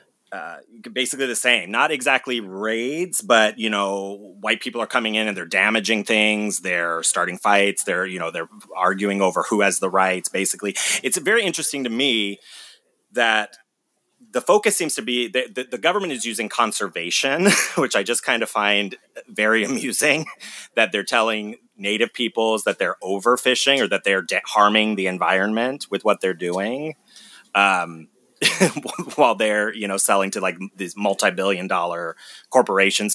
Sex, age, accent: male, 30-49, American